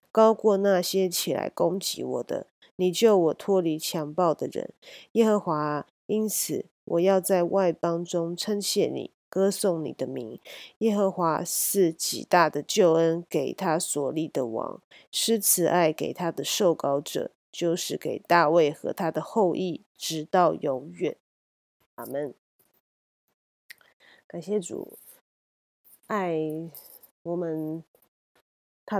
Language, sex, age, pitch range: Chinese, female, 30-49, 155-190 Hz